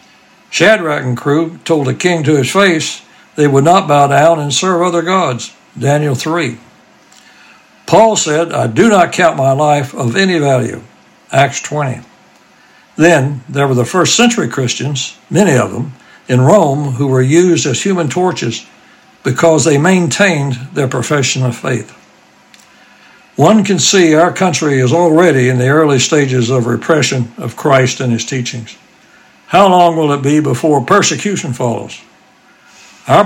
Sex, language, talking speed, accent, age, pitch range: male, English, 155 wpm, American, 60-79, 130-170 Hz